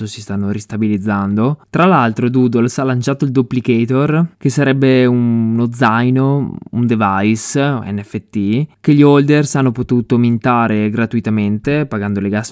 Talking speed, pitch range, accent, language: 130 wpm, 110-130 Hz, native, Italian